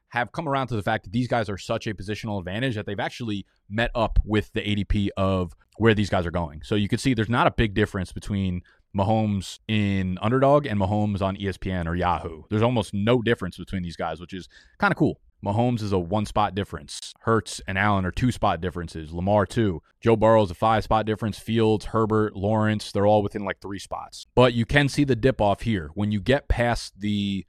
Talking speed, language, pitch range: 215 wpm, English, 95-115 Hz